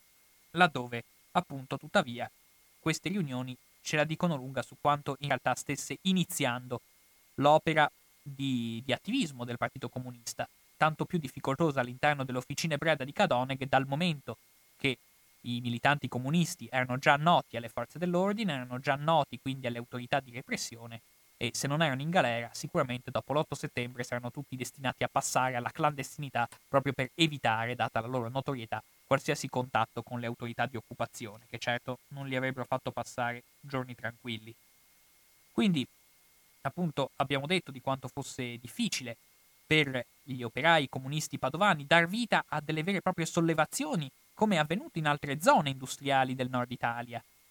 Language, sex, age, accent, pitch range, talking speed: Italian, male, 20-39, native, 120-155 Hz, 155 wpm